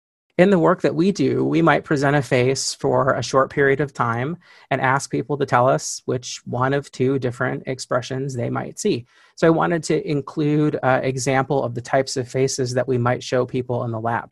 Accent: American